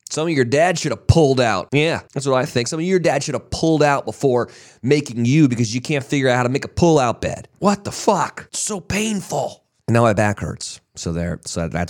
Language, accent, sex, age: English, American, male, 30-49